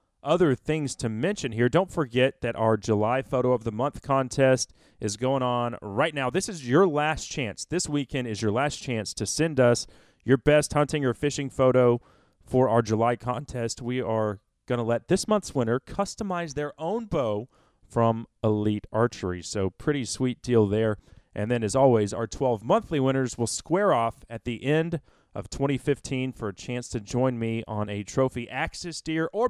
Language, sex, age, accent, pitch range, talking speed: English, male, 30-49, American, 110-145 Hz, 190 wpm